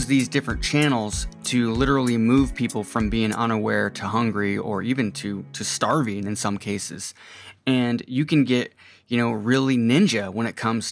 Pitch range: 105-130 Hz